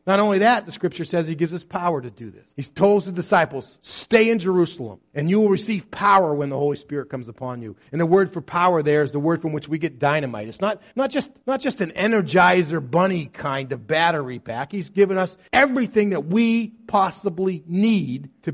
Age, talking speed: 40-59, 220 wpm